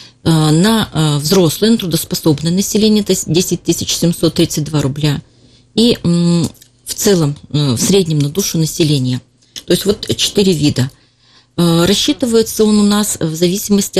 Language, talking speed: Russian, 120 wpm